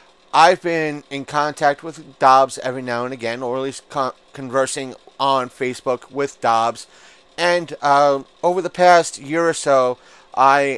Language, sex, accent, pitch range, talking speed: English, male, American, 125-145 Hz, 155 wpm